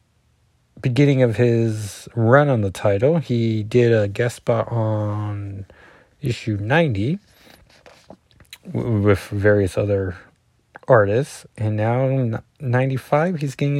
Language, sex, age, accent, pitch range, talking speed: English, male, 30-49, American, 100-120 Hz, 110 wpm